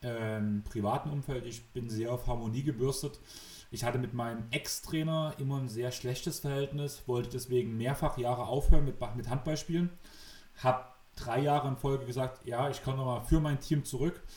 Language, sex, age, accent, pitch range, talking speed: German, male, 30-49, German, 120-140 Hz, 165 wpm